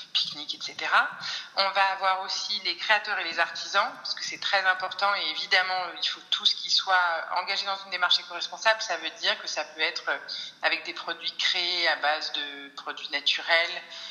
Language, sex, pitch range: French, female, 155-200 Hz